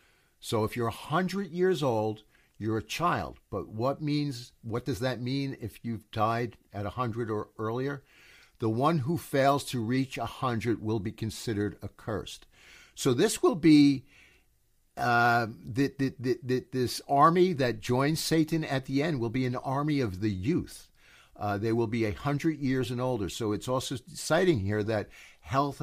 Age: 60-79